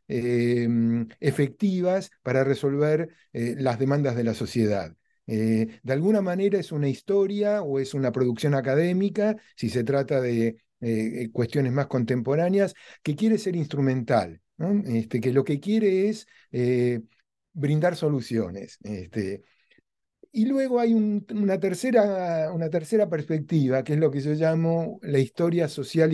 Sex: male